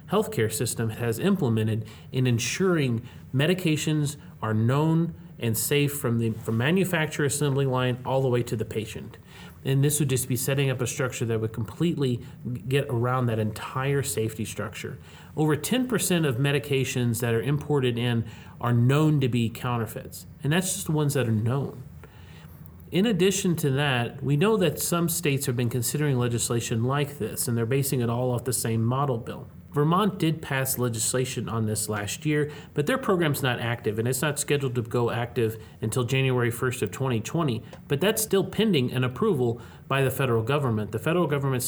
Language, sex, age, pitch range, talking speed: English, male, 30-49, 115-145 Hz, 180 wpm